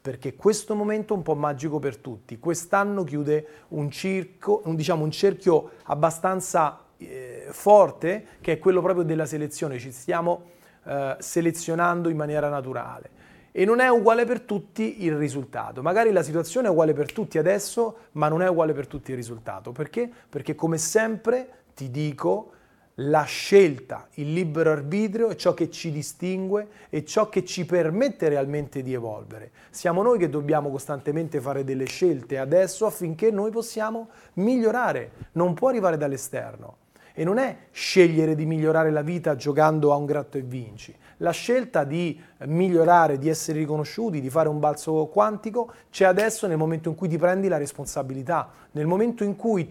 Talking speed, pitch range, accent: 165 wpm, 150-195 Hz, native